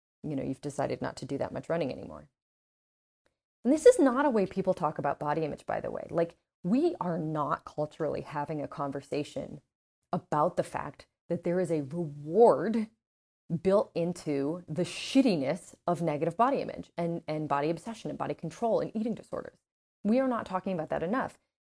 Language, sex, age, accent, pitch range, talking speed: English, female, 30-49, American, 155-220 Hz, 185 wpm